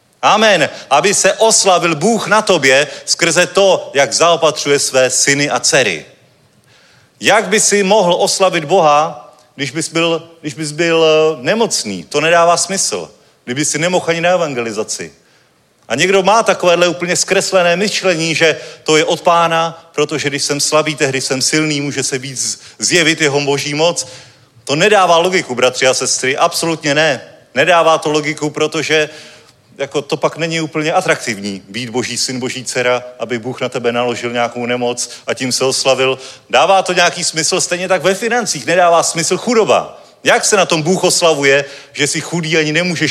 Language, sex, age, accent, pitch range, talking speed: Czech, male, 30-49, native, 135-170 Hz, 165 wpm